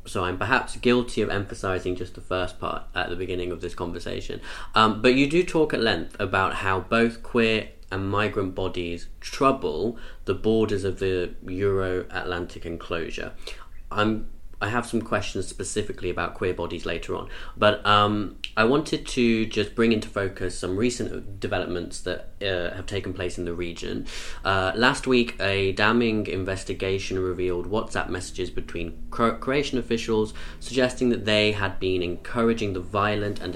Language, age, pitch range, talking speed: English, 20-39, 90-115 Hz, 160 wpm